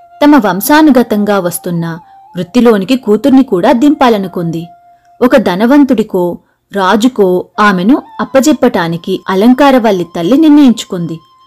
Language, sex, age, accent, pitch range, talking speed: Telugu, female, 30-49, native, 190-290 Hz, 80 wpm